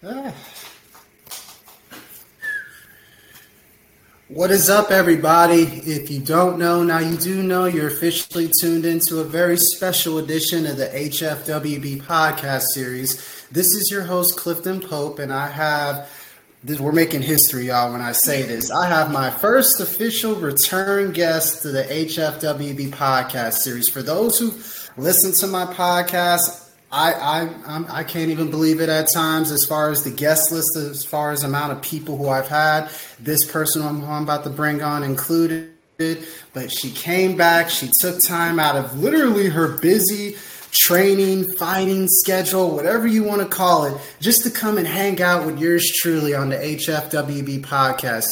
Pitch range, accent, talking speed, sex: 145-180 Hz, American, 160 wpm, male